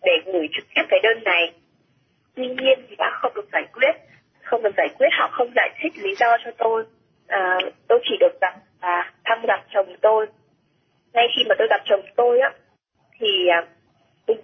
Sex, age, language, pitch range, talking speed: female, 20-39, Vietnamese, 210-335 Hz, 200 wpm